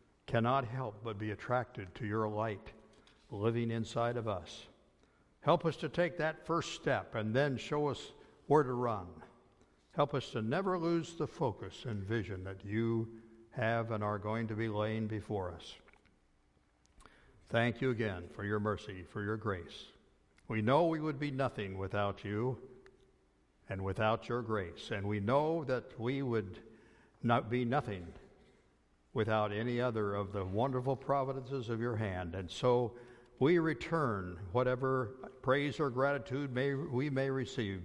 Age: 60-79